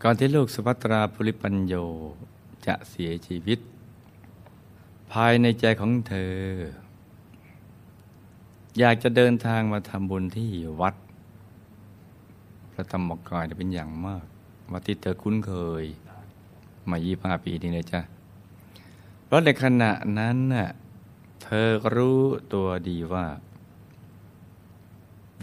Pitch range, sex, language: 90-105 Hz, male, Thai